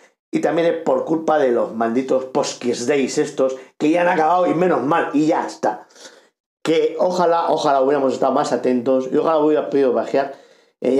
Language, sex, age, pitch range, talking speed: Spanish, male, 50-69, 120-155 Hz, 185 wpm